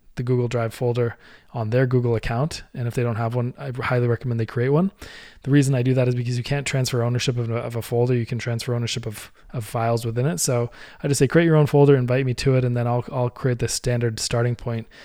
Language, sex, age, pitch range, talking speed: English, male, 20-39, 115-130 Hz, 260 wpm